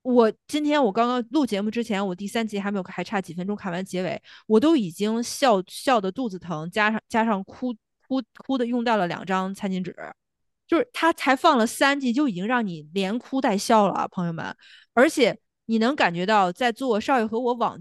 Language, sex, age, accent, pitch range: Chinese, female, 20-39, native, 185-235 Hz